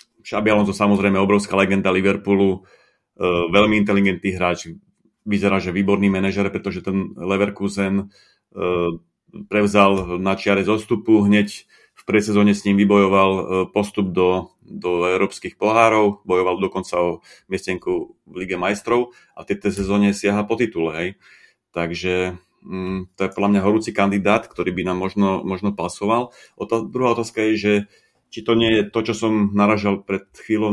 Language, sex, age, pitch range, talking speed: Slovak, male, 30-49, 95-105 Hz, 140 wpm